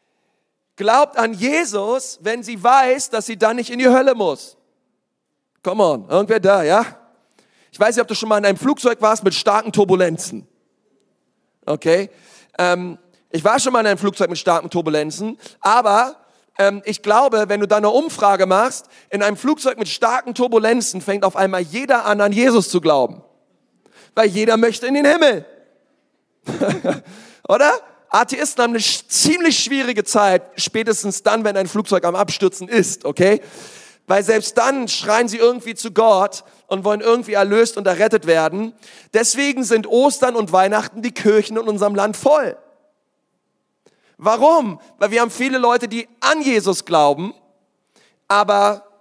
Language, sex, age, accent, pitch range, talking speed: German, male, 40-59, German, 200-245 Hz, 160 wpm